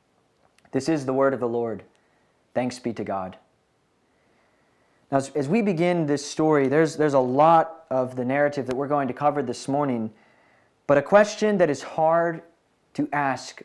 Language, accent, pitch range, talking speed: English, American, 135-175 Hz, 170 wpm